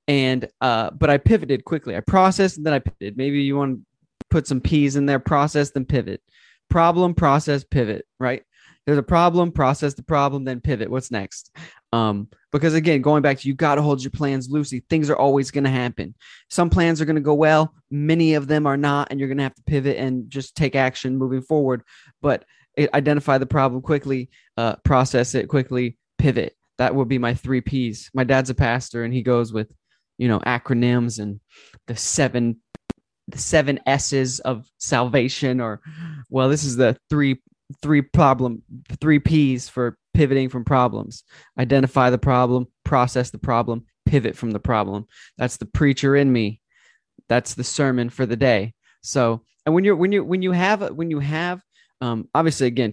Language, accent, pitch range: English, American, 125-145 Hz